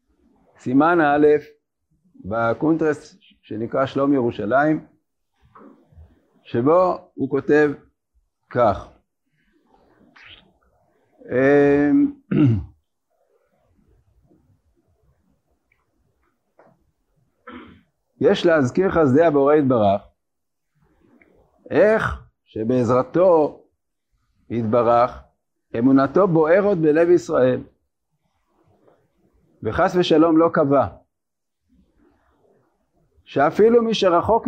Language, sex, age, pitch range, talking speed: Hebrew, male, 60-79, 125-185 Hz, 50 wpm